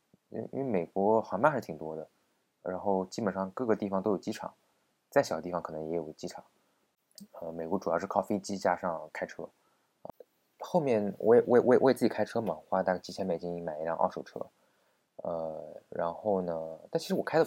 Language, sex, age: Chinese, male, 20-39